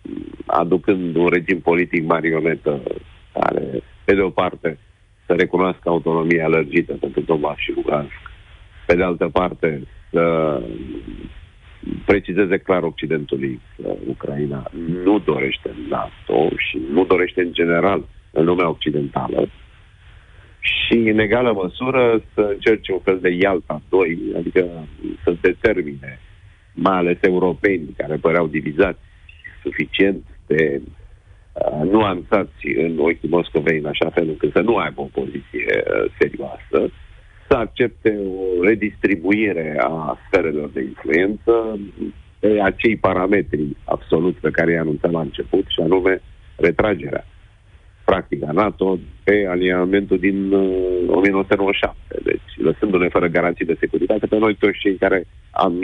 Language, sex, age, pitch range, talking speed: Romanian, male, 50-69, 85-100 Hz, 125 wpm